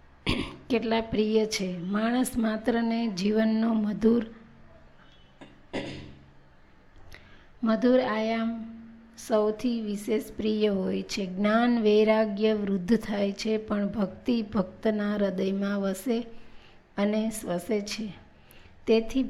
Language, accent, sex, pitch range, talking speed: Gujarati, native, female, 200-225 Hz, 75 wpm